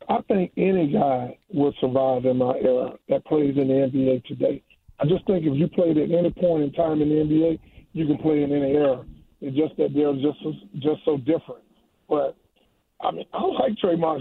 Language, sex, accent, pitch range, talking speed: English, male, American, 150-180 Hz, 215 wpm